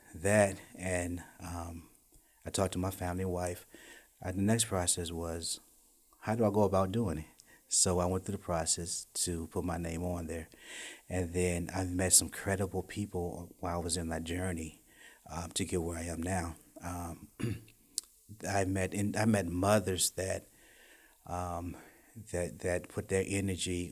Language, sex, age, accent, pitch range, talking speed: English, male, 30-49, American, 85-100 Hz, 170 wpm